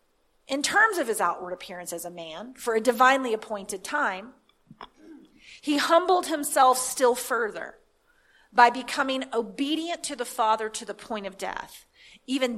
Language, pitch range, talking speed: English, 220-310 Hz, 150 wpm